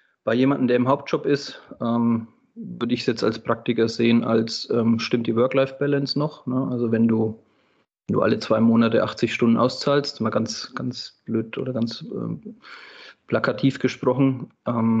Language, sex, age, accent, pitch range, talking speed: German, male, 30-49, German, 115-130 Hz, 145 wpm